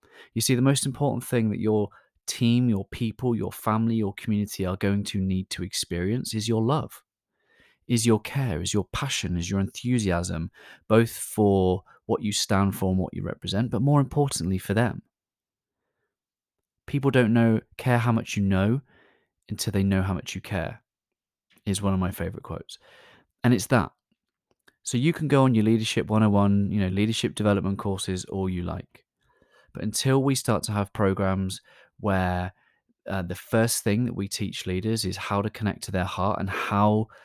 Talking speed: 180 wpm